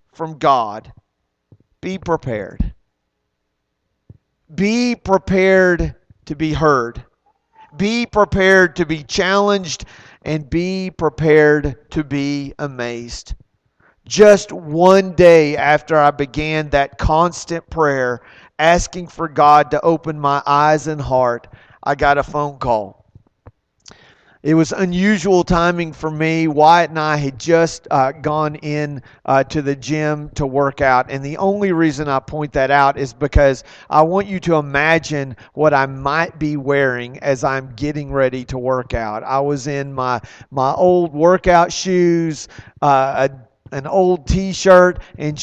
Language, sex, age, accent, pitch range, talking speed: English, male, 40-59, American, 135-170 Hz, 140 wpm